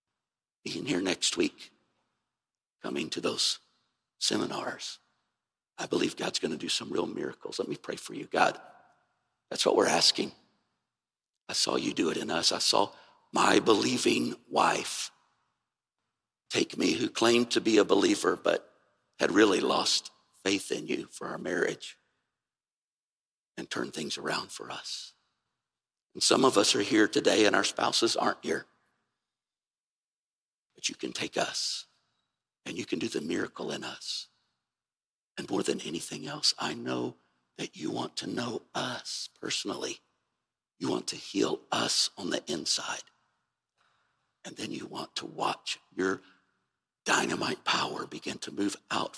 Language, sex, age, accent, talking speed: English, male, 60-79, American, 150 wpm